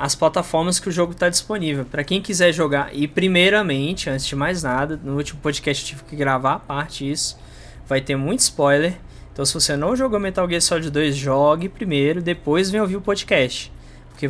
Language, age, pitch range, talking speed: Portuguese, 20-39, 135-175 Hz, 200 wpm